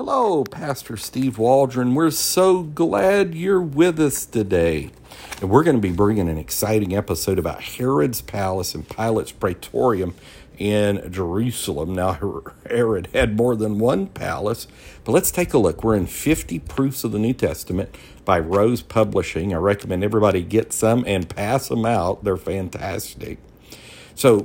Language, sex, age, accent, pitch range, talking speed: English, male, 50-69, American, 90-115 Hz, 155 wpm